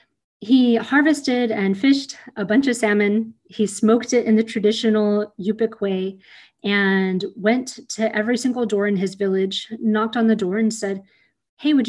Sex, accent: female, American